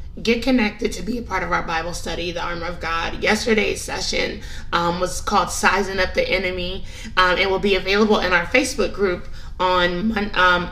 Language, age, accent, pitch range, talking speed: English, 20-39, American, 170-205 Hz, 190 wpm